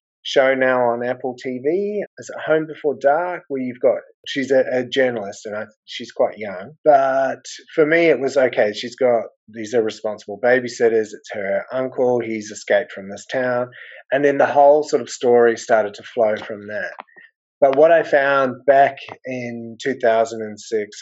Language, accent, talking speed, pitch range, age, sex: English, Australian, 175 wpm, 110-140 Hz, 30-49, male